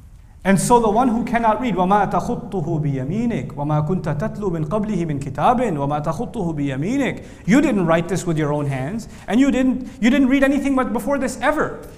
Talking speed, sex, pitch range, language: 190 wpm, male, 175-250 Hz, English